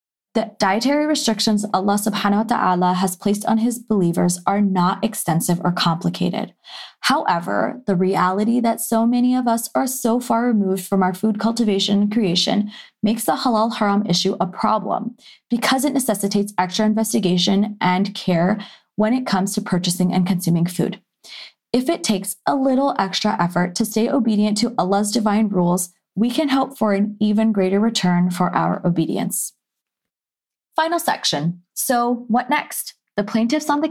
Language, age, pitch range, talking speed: English, 20-39, 190-230 Hz, 160 wpm